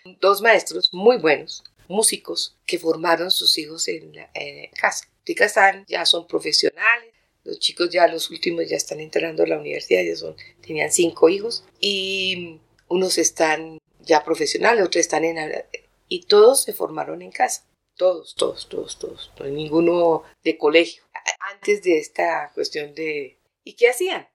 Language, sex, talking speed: English, female, 160 wpm